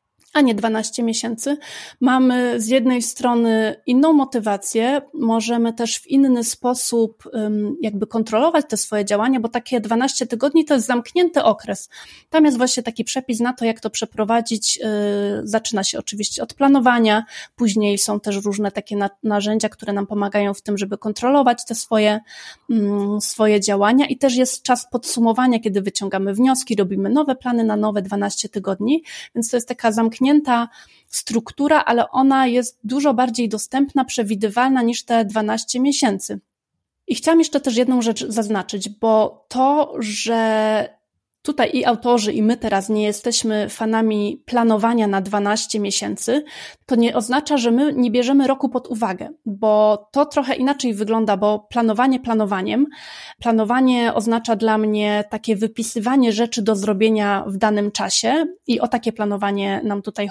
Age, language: 30-49, Polish